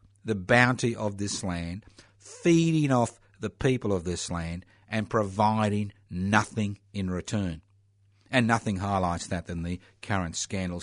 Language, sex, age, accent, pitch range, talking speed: English, male, 60-79, Australian, 95-110 Hz, 140 wpm